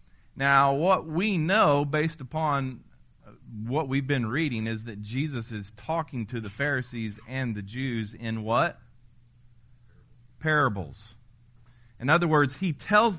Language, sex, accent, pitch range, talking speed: English, male, American, 120-160 Hz, 130 wpm